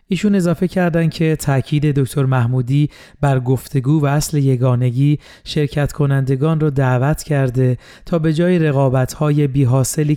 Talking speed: 130 wpm